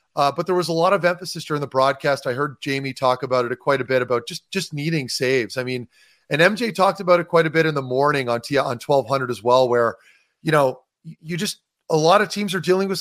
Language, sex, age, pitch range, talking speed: English, male, 30-49, 140-180 Hz, 265 wpm